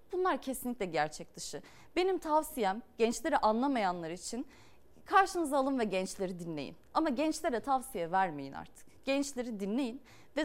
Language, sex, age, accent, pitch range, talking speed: Turkish, female, 30-49, native, 205-300 Hz, 125 wpm